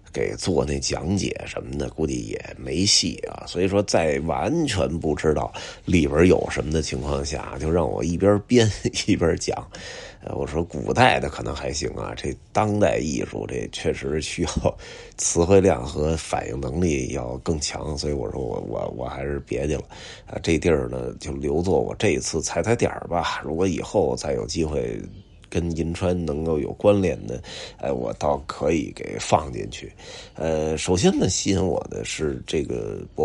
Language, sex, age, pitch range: Chinese, male, 30-49, 75-100 Hz